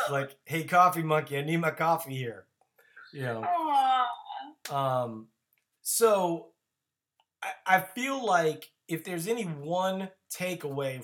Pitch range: 135-170 Hz